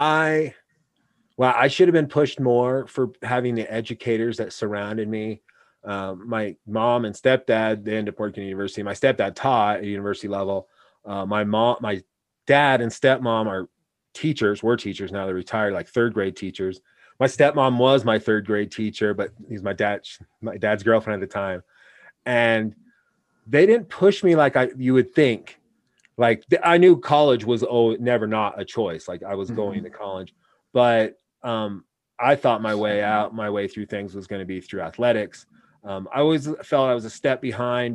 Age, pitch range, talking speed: 30-49, 105-130 Hz, 185 wpm